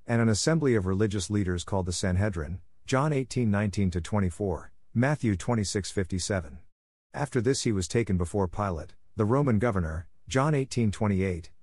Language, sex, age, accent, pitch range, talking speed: English, male, 50-69, American, 90-115 Hz, 175 wpm